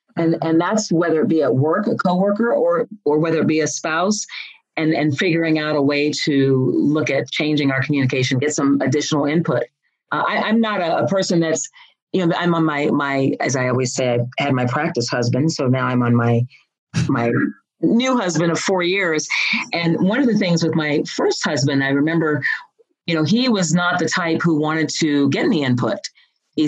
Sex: female